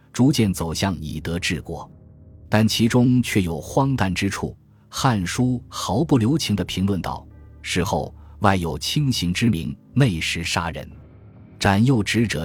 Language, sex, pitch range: Chinese, male, 80-110 Hz